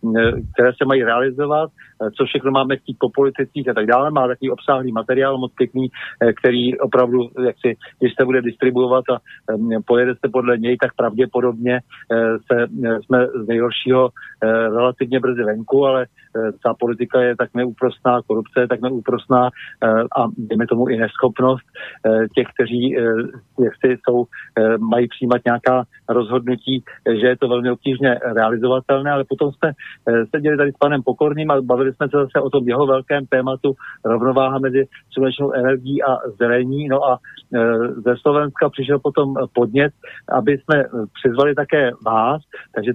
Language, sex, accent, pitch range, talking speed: Czech, male, native, 120-140 Hz, 145 wpm